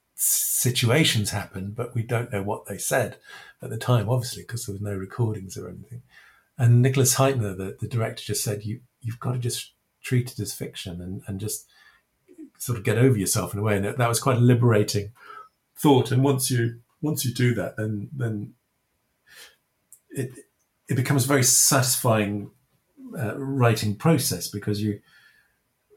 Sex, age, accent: male, 50-69, British